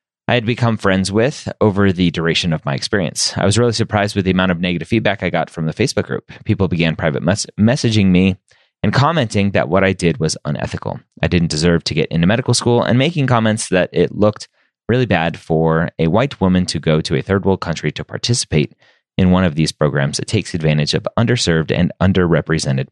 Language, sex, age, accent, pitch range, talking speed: English, male, 30-49, American, 85-115 Hz, 210 wpm